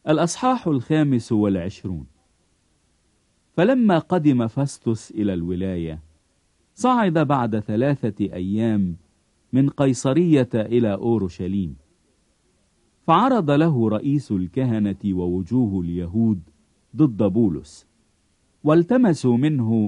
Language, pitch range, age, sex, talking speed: English, 95-140 Hz, 50-69, male, 80 wpm